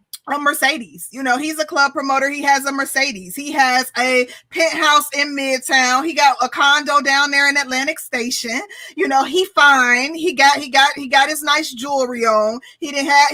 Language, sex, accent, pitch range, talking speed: English, female, American, 265-315 Hz, 200 wpm